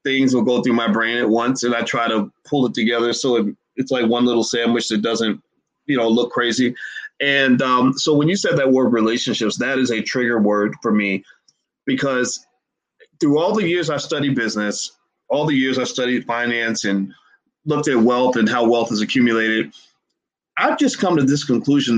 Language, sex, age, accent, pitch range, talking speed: English, male, 30-49, American, 120-165 Hz, 200 wpm